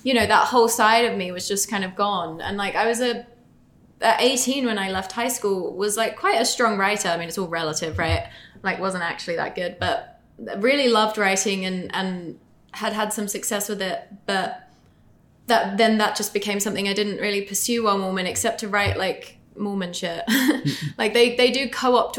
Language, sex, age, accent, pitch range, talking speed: English, female, 20-39, British, 185-230 Hz, 210 wpm